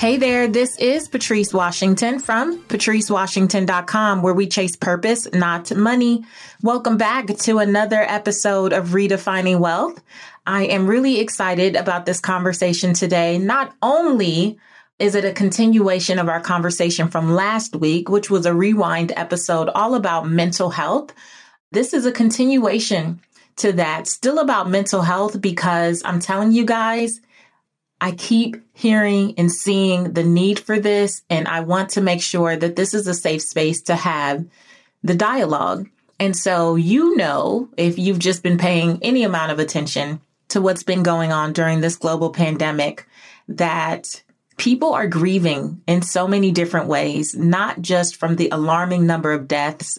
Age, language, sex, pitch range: 30-49, English, female, 170-215 Hz